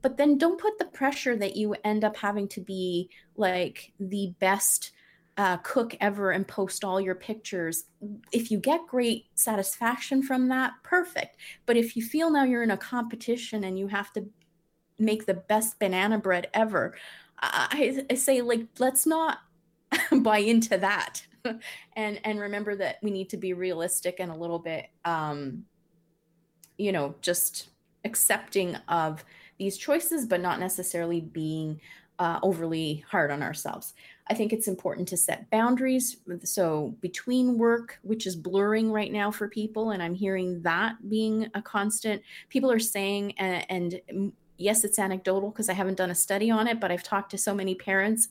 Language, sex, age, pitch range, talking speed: English, female, 20-39, 180-225 Hz, 170 wpm